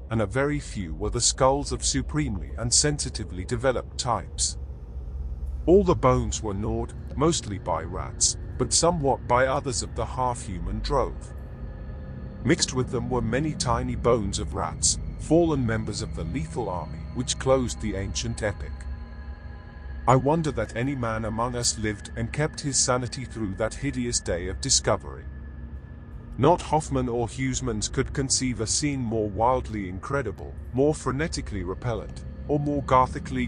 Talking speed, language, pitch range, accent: 150 wpm, English, 95-130 Hz, British